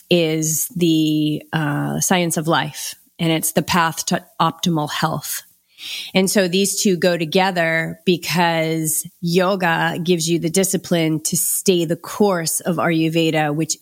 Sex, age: female, 30-49